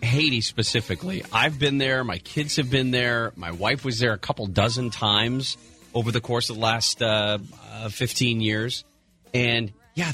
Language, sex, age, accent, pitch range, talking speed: English, male, 30-49, American, 110-185 Hz, 180 wpm